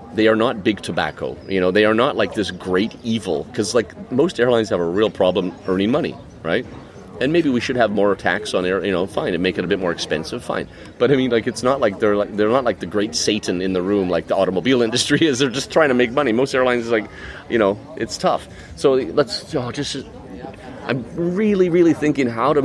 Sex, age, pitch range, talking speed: male, 30-49, 85-115 Hz, 245 wpm